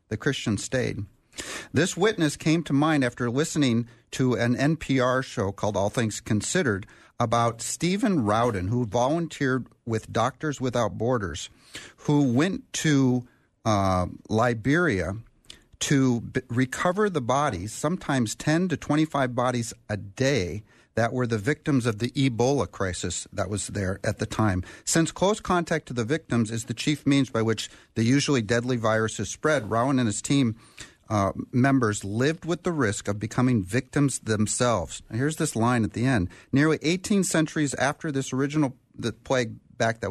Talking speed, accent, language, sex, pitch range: 160 wpm, American, English, male, 110-145 Hz